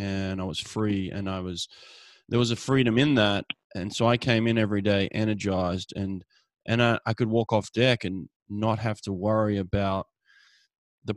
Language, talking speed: English, 195 wpm